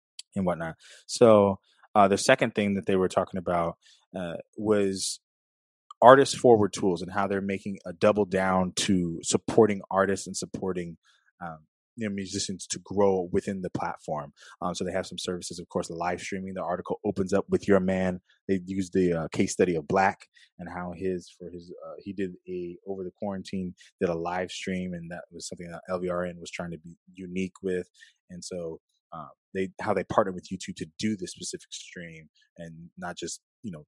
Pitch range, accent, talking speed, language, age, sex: 85-100 Hz, American, 195 wpm, English, 20-39, male